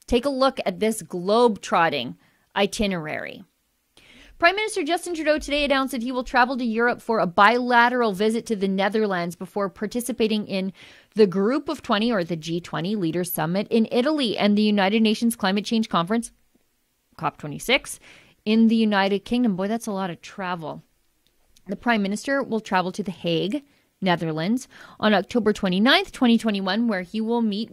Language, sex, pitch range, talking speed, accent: English, female, 185-235 Hz, 160 wpm, American